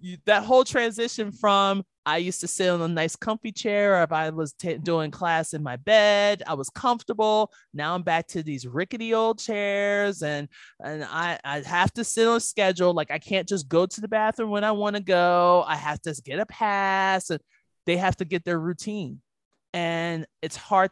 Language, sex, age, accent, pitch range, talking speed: English, male, 20-39, American, 165-210 Hz, 210 wpm